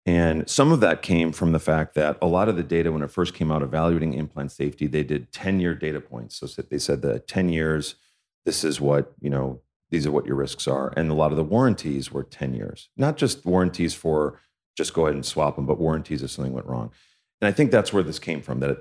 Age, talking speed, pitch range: 40-59, 250 wpm, 75-95 Hz